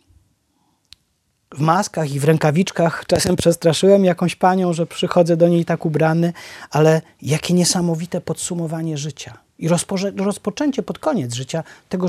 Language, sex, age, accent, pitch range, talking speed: Polish, male, 30-49, native, 145-200 Hz, 130 wpm